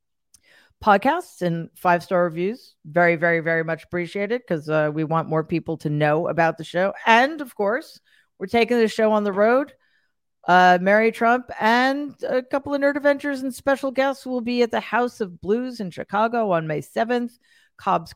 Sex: female